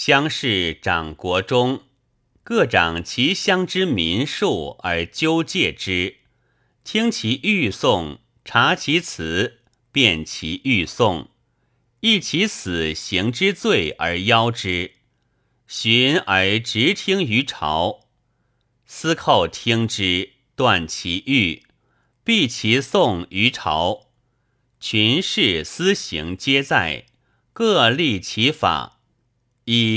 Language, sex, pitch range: Chinese, male, 100-135 Hz